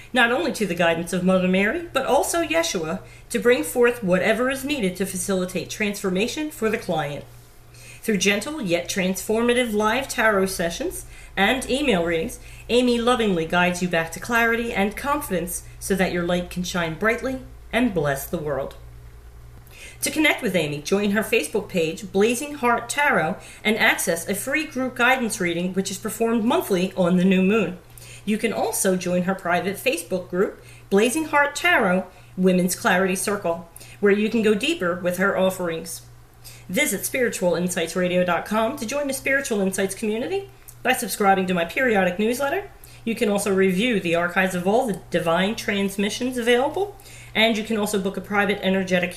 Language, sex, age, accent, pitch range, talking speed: English, female, 40-59, American, 180-235 Hz, 165 wpm